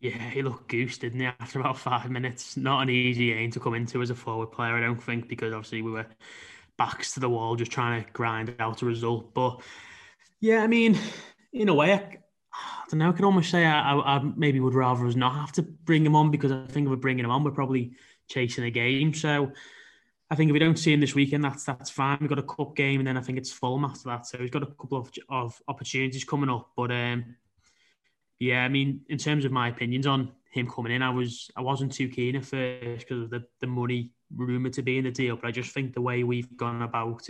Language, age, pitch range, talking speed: English, 20-39, 120-135 Hz, 255 wpm